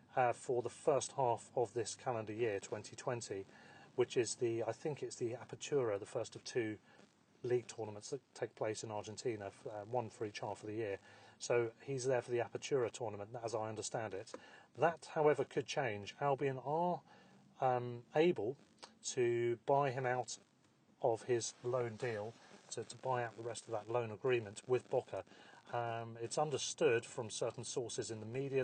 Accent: British